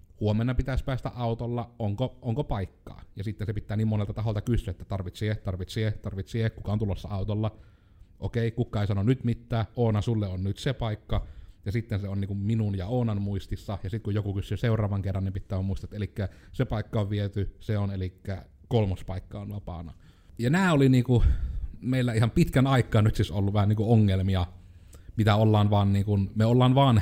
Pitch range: 95-115 Hz